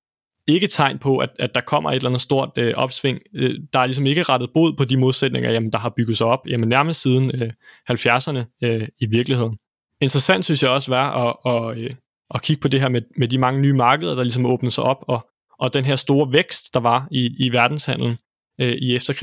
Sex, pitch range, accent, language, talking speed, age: male, 120-145 Hz, native, Danish, 230 wpm, 20-39